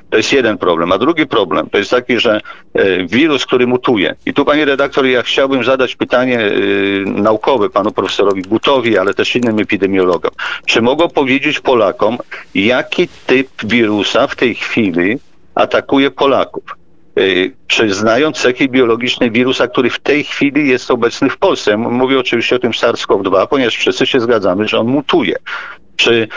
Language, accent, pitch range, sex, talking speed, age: Polish, native, 120-160 Hz, male, 155 wpm, 50-69